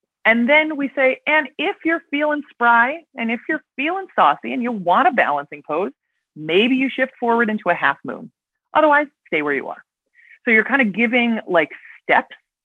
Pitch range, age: 155-235 Hz, 30-49